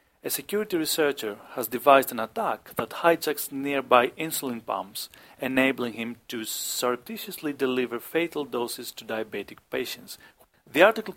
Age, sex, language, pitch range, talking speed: 40-59, male, English, 120-170 Hz, 130 wpm